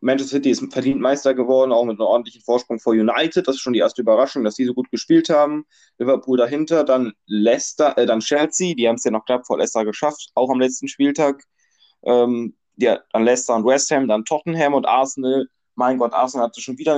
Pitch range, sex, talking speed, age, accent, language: 120-140 Hz, male, 225 wpm, 20-39, German, German